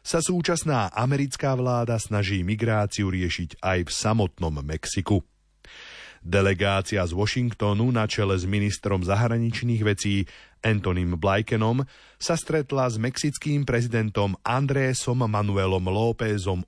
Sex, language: male, Slovak